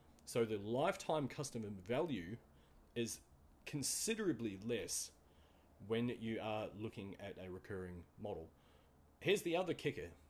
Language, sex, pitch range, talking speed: English, male, 90-130 Hz, 115 wpm